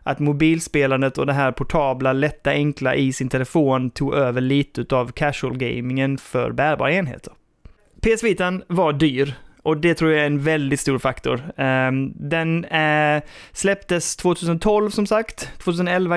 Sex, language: male, Swedish